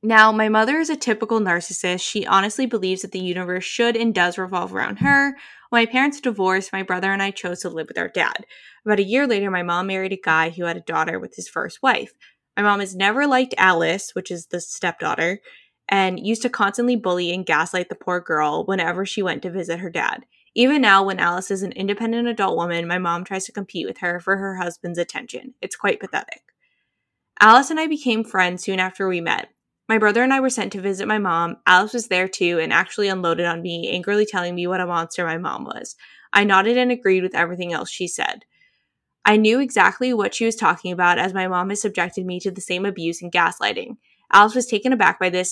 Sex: female